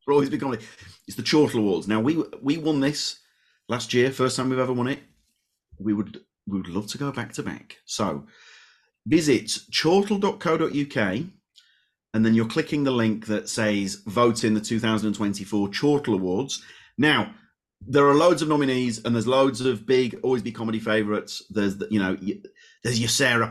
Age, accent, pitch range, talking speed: 40-59, British, 110-140 Hz, 180 wpm